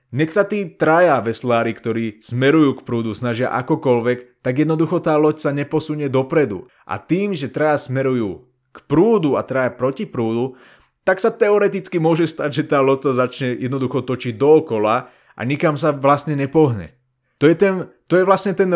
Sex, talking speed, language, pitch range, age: male, 175 wpm, Slovak, 125-160 Hz, 30-49